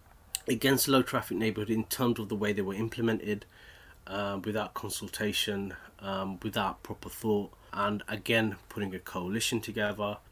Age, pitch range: 30-49, 90-110 Hz